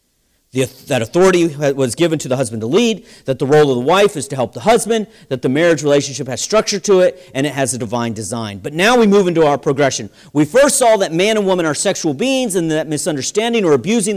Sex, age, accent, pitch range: male, 40-59, American, 135-200 Hz